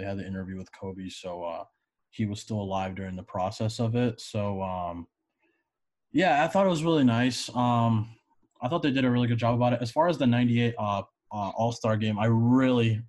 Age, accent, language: 20-39, American, English